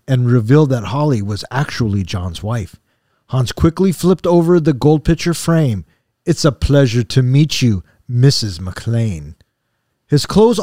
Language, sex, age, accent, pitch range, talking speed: English, male, 40-59, American, 130-190 Hz, 145 wpm